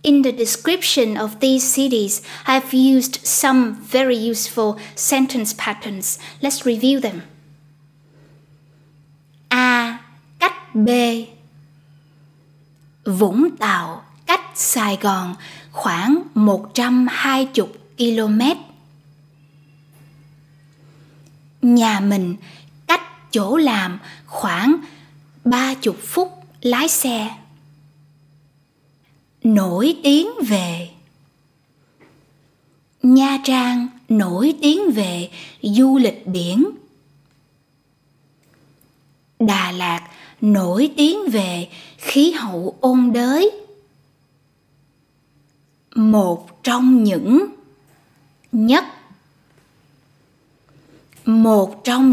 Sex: female